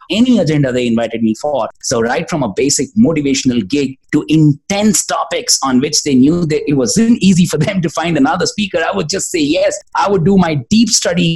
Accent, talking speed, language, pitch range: Indian, 215 wpm, English, 150-220 Hz